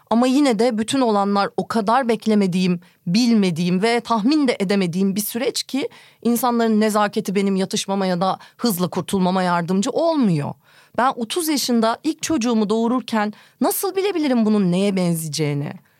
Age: 30-49